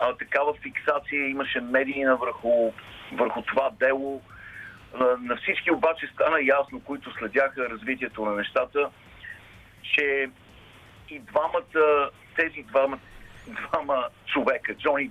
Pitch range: 115-145 Hz